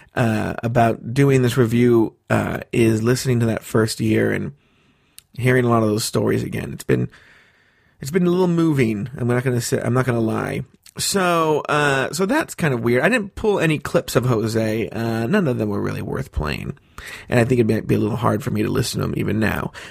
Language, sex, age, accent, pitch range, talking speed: English, male, 30-49, American, 120-170 Hz, 230 wpm